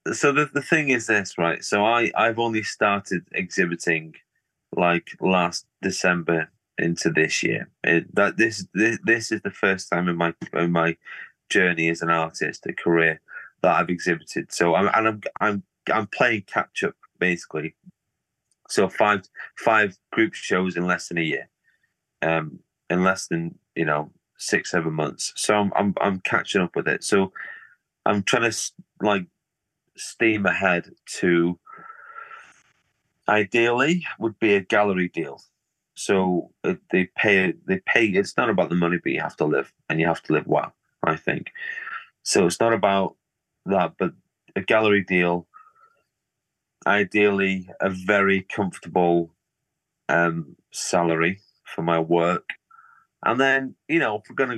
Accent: British